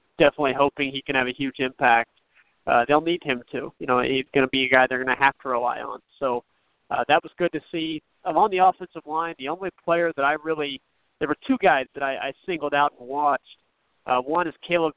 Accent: American